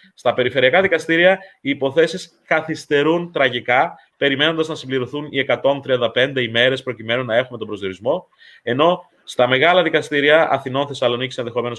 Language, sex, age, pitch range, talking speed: Greek, male, 20-39, 125-165 Hz, 125 wpm